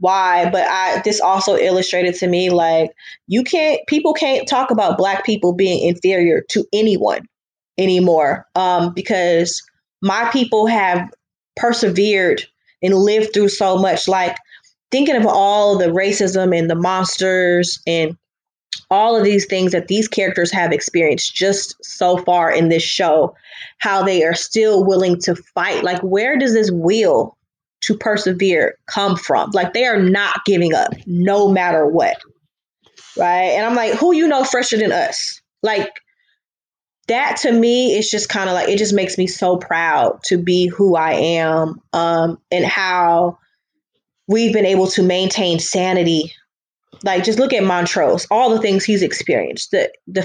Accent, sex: American, female